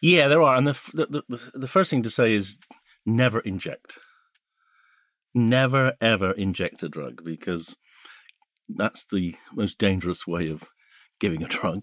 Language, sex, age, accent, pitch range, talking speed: English, male, 50-69, British, 85-120 Hz, 150 wpm